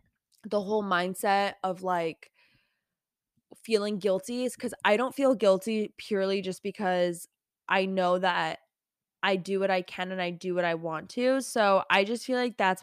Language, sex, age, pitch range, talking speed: English, female, 20-39, 180-210 Hz, 175 wpm